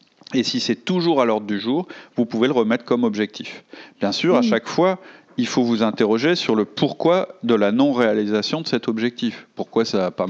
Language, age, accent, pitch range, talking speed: French, 40-59, French, 110-150 Hz, 210 wpm